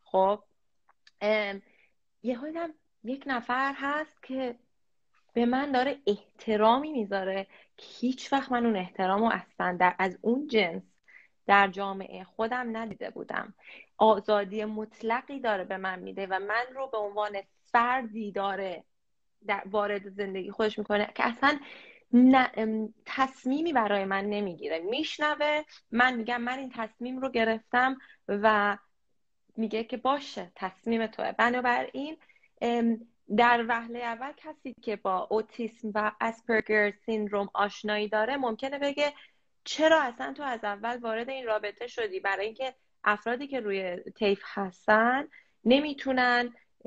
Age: 30-49